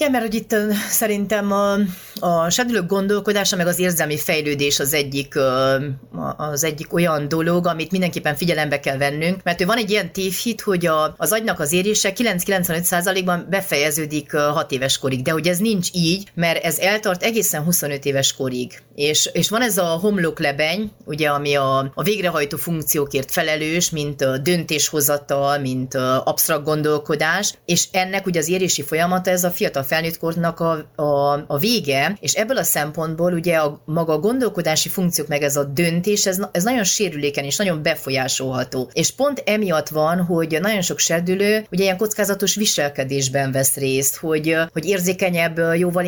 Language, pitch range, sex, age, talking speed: Hungarian, 145-185 Hz, female, 30-49, 155 wpm